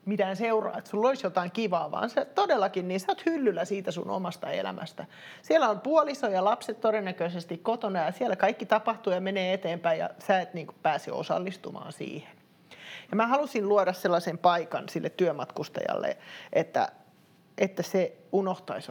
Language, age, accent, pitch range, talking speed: Finnish, 30-49, native, 180-215 Hz, 160 wpm